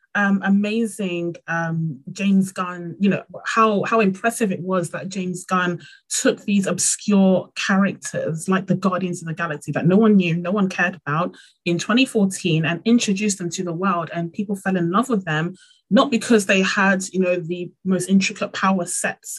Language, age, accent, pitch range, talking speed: English, 30-49, British, 165-200 Hz, 185 wpm